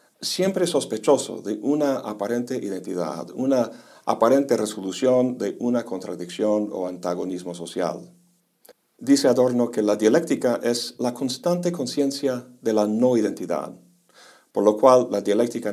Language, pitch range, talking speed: Spanish, 100-135 Hz, 120 wpm